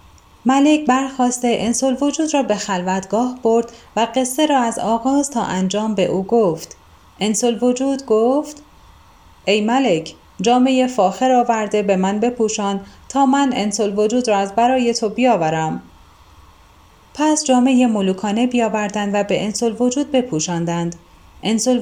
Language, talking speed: Persian, 130 wpm